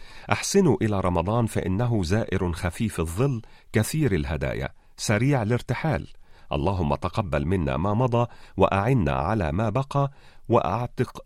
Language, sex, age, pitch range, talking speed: Arabic, male, 40-59, 85-125 Hz, 110 wpm